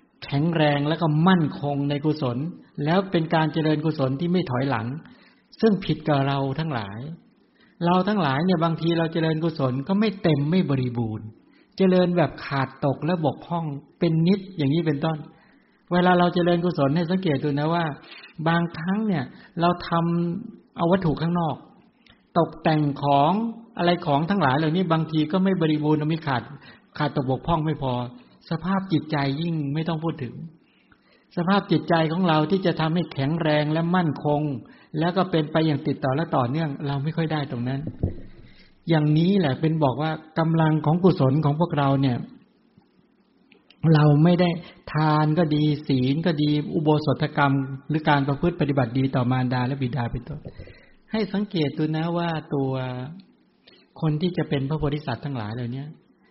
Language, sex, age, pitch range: English, male, 60-79, 140-170 Hz